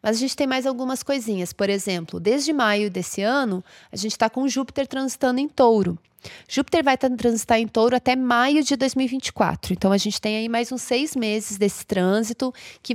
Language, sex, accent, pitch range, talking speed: Portuguese, female, Brazilian, 205-260 Hz, 190 wpm